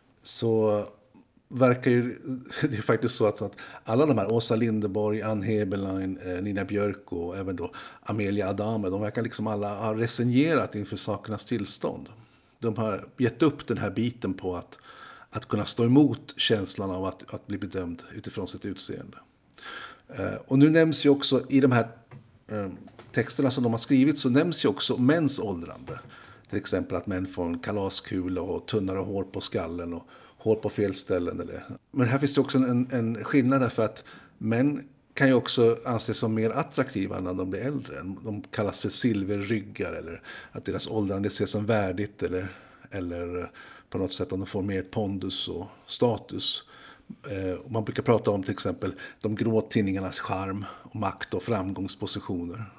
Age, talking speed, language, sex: 50-69, 165 wpm, Swedish, male